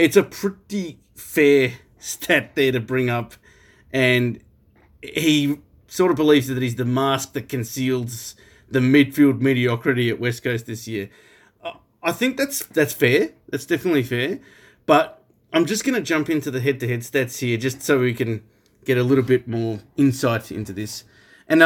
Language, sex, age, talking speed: English, male, 30-49, 165 wpm